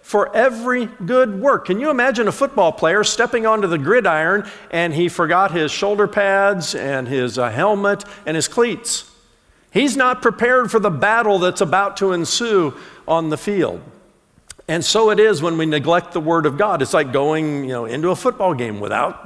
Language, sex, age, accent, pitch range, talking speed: English, male, 50-69, American, 155-220 Hz, 190 wpm